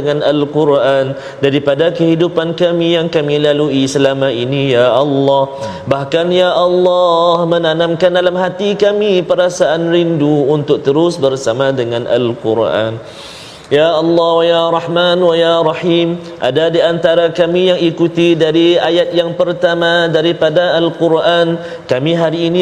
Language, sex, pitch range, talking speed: Malayalam, male, 135-170 Hz, 95 wpm